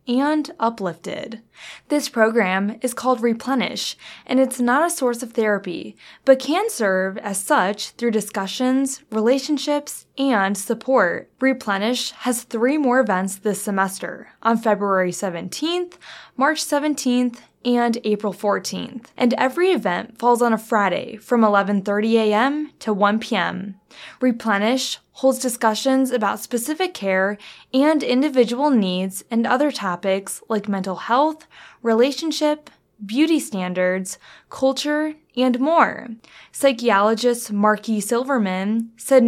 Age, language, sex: 10-29, English, female